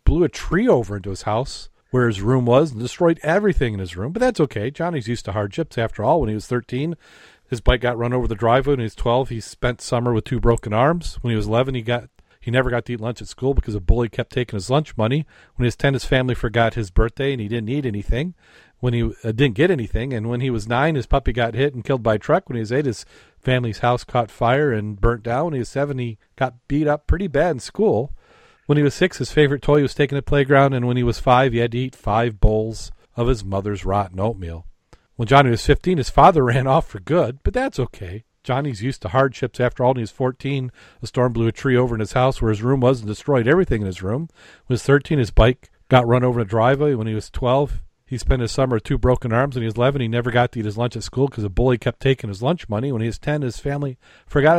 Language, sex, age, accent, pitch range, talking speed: English, male, 40-59, American, 115-135 Hz, 275 wpm